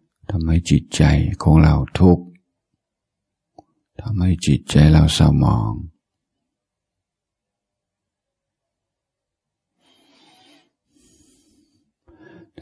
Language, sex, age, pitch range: Thai, male, 60-79, 75-90 Hz